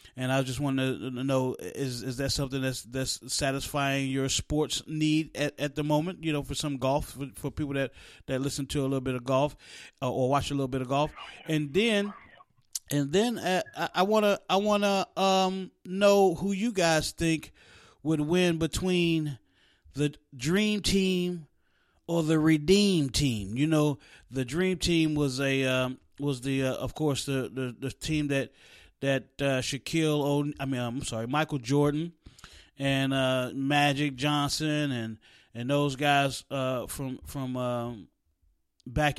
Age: 30-49